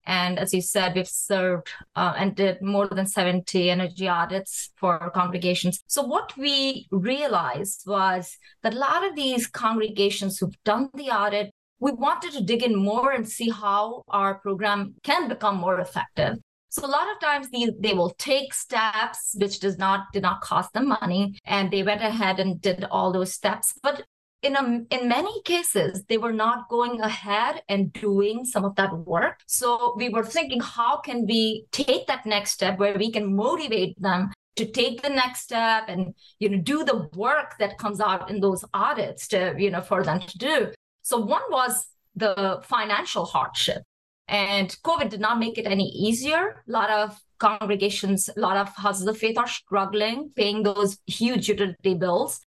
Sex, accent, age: female, Indian, 20-39